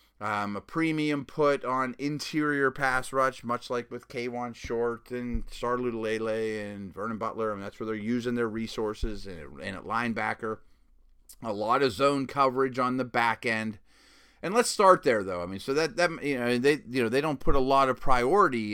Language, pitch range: English, 110-135 Hz